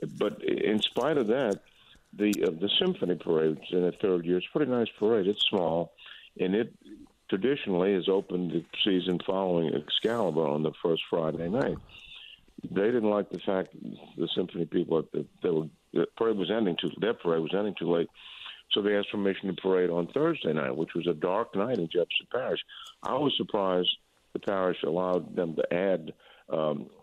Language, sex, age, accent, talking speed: English, male, 50-69, American, 185 wpm